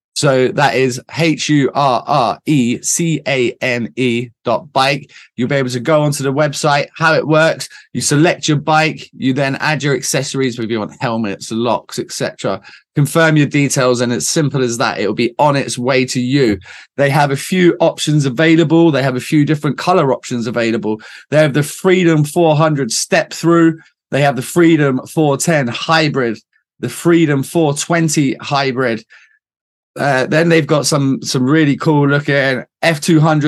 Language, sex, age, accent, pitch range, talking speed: English, male, 20-39, British, 130-160 Hz, 175 wpm